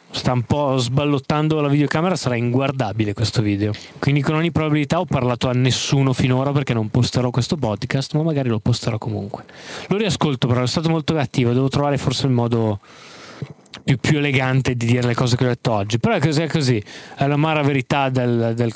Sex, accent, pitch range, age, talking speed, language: male, native, 120-150 Hz, 20-39, 200 wpm, Italian